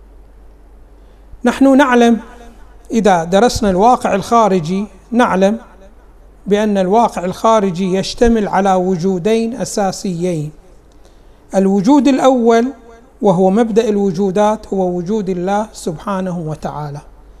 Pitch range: 190-235 Hz